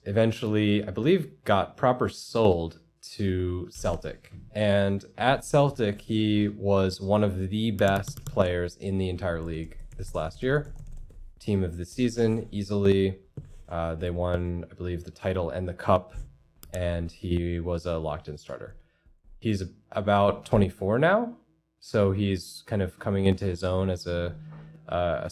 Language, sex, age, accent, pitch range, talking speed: English, male, 20-39, American, 90-115 Hz, 145 wpm